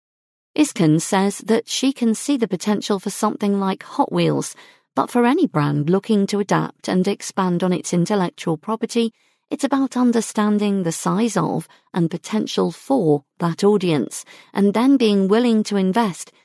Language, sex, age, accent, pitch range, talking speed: English, female, 40-59, British, 170-220 Hz, 155 wpm